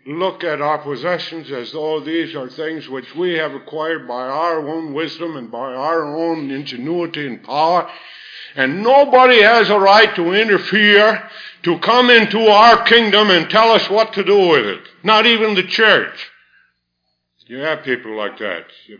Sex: male